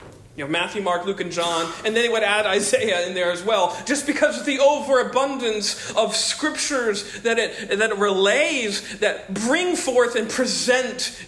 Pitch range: 185-235 Hz